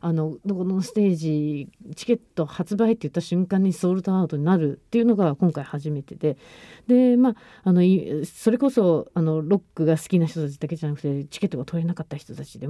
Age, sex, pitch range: 40-59, female, 155-210 Hz